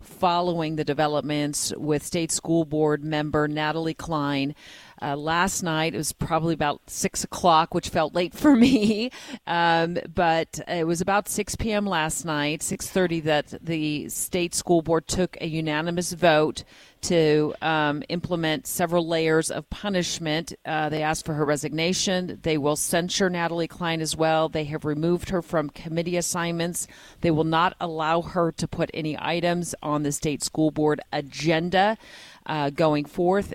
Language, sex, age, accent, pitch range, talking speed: English, female, 40-59, American, 155-180 Hz, 160 wpm